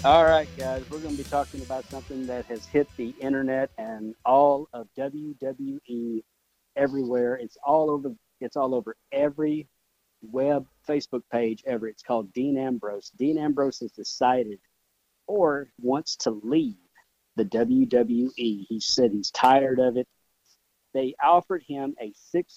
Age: 50-69